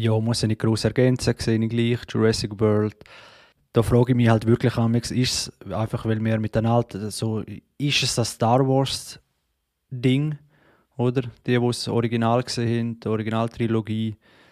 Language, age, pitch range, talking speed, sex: German, 20-39, 110-125 Hz, 175 wpm, male